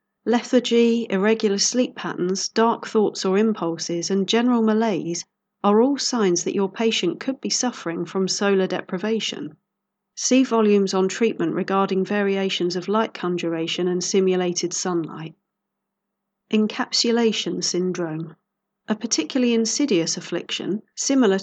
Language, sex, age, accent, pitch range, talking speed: English, female, 40-59, British, 185-225 Hz, 120 wpm